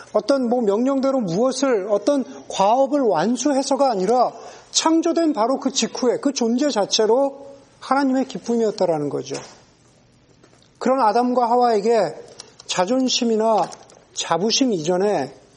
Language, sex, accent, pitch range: Korean, male, native, 190-260 Hz